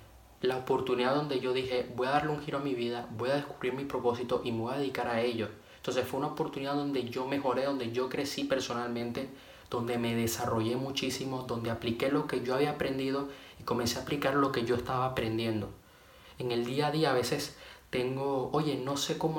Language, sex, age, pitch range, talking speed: Spanish, male, 20-39, 120-140 Hz, 210 wpm